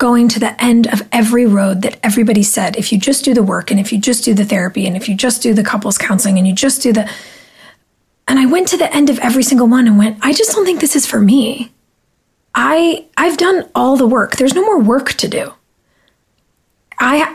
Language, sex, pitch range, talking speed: English, female, 200-250 Hz, 240 wpm